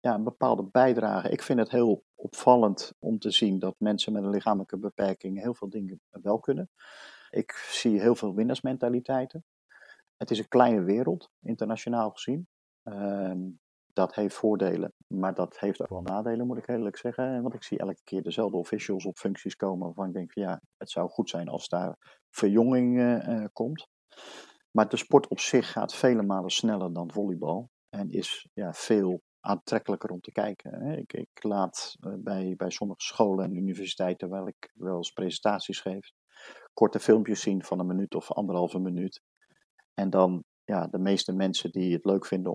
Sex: male